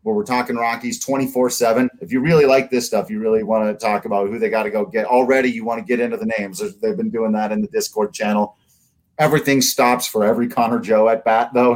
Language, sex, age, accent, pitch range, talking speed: English, male, 40-59, American, 110-160 Hz, 245 wpm